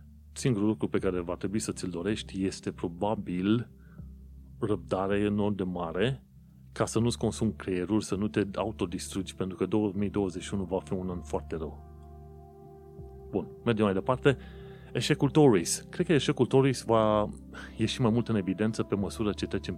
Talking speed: 160 wpm